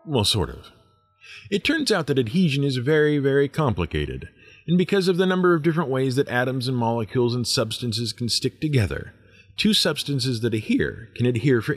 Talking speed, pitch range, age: 185 wpm, 100-140 Hz, 40-59